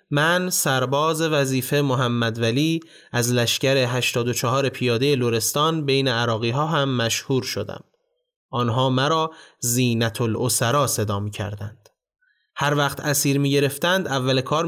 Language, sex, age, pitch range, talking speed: Persian, male, 30-49, 120-165 Hz, 115 wpm